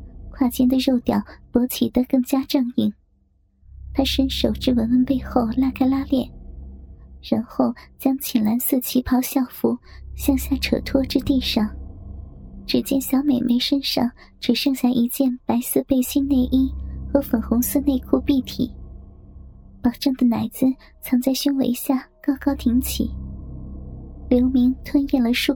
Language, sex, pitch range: Chinese, male, 235-270 Hz